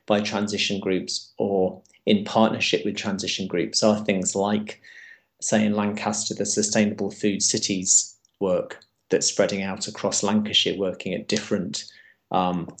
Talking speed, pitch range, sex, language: 135 wpm, 100-110 Hz, male, English